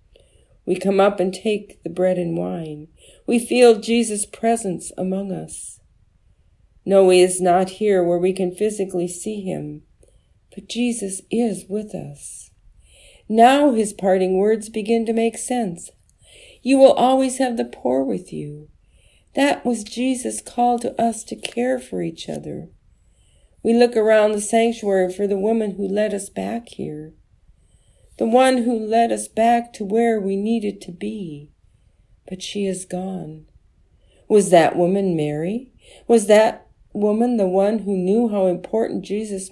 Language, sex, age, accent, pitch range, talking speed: English, female, 50-69, American, 160-225 Hz, 155 wpm